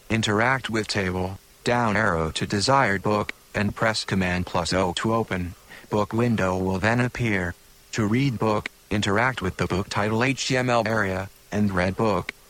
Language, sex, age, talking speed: English, male, 40-59, 160 wpm